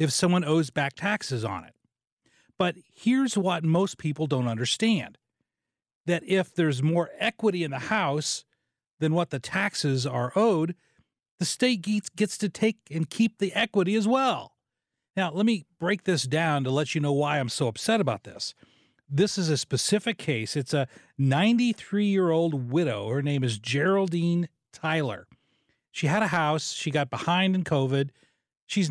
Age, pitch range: 40-59, 140-195 Hz